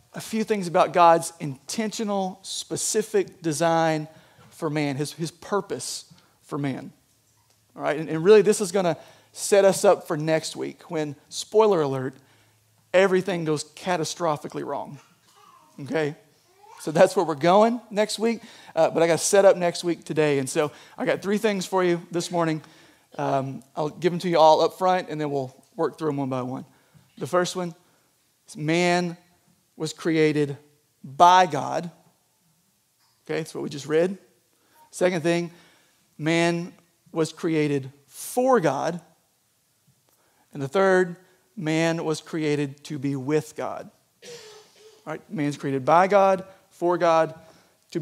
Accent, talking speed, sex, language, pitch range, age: American, 155 wpm, male, English, 150-180 Hz, 40-59